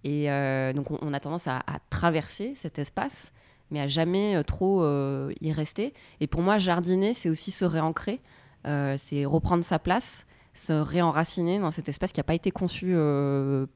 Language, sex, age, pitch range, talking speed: French, female, 20-39, 135-170 Hz, 185 wpm